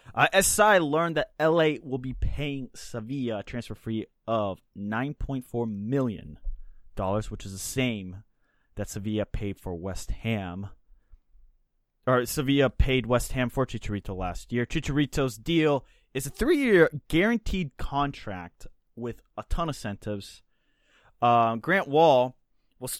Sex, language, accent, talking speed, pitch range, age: male, English, American, 130 wpm, 105-140 Hz, 20-39